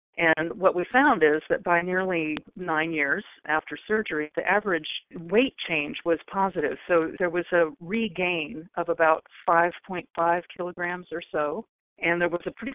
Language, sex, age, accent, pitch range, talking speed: English, female, 40-59, American, 155-180 Hz, 160 wpm